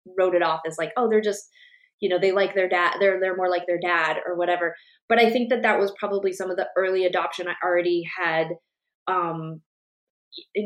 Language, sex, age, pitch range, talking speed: English, female, 20-39, 170-210 Hz, 220 wpm